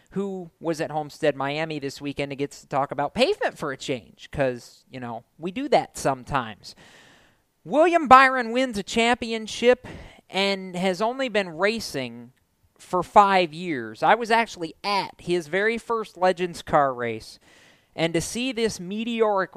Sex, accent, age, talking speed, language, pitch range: male, American, 40-59, 155 wpm, English, 145-195 Hz